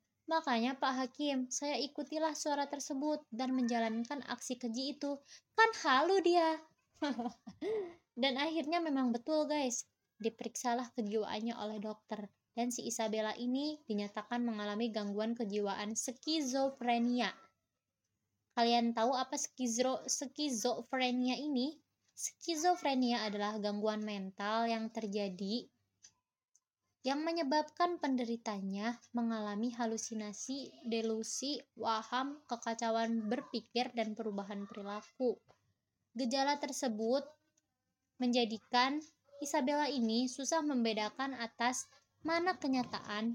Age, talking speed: 20-39, 95 wpm